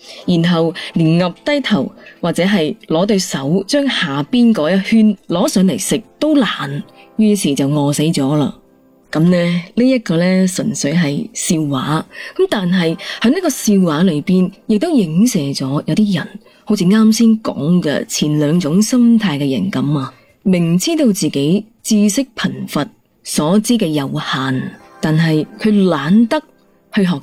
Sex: female